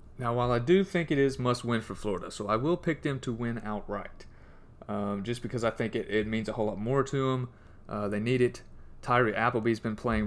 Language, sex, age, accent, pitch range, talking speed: English, male, 30-49, American, 105-125 Hz, 235 wpm